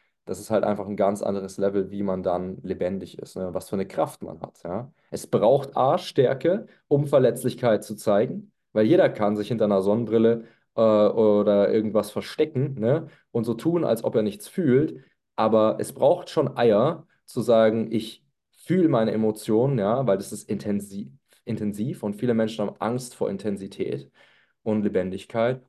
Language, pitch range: German, 100-115 Hz